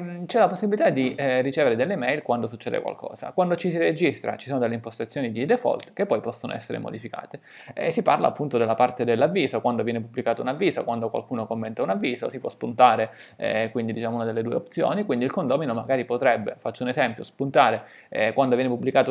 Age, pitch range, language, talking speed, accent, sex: 20-39, 120-135 Hz, Italian, 205 wpm, native, male